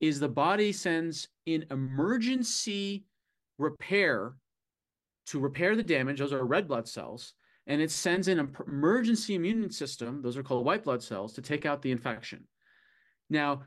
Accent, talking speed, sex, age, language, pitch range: American, 160 wpm, male, 30-49, English, 135-175 Hz